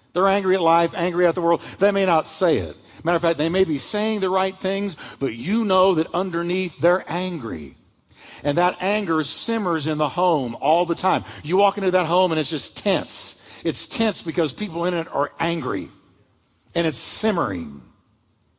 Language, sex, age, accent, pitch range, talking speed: English, male, 50-69, American, 155-205 Hz, 195 wpm